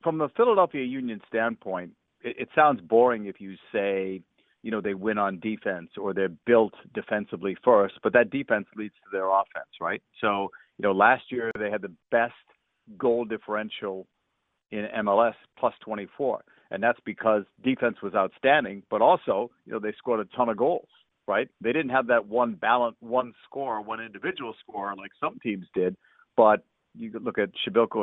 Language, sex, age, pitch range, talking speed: English, male, 50-69, 105-125 Hz, 180 wpm